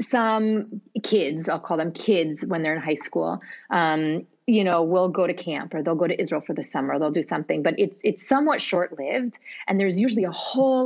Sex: female